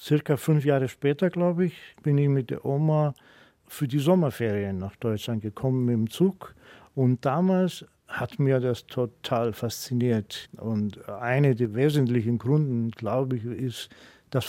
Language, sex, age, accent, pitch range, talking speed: German, male, 50-69, German, 120-145 Hz, 150 wpm